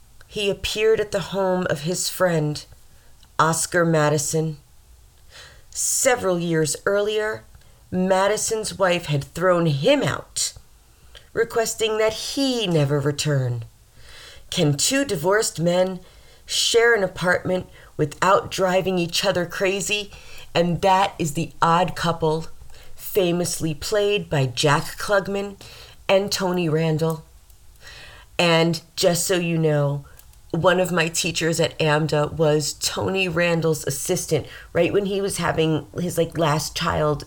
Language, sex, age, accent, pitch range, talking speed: English, female, 40-59, American, 145-185 Hz, 120 wpm